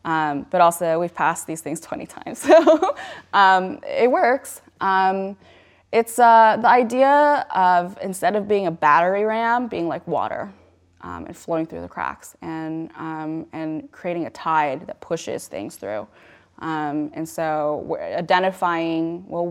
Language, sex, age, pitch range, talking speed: English, female, 20-39, 155-185 Hz, 155 wpm